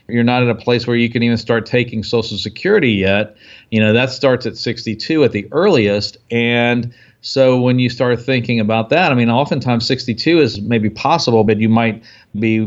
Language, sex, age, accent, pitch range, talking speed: English, male, 50-69, American, 110-125 Hz, 200 wpm